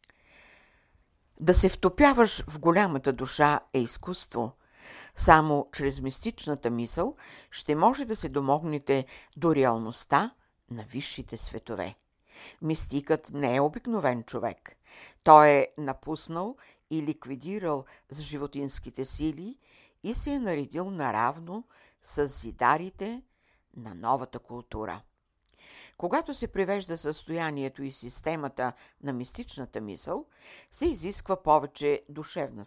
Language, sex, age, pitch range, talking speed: Bulgarian, female, 60-79, 130-170 Hz, 105 wpm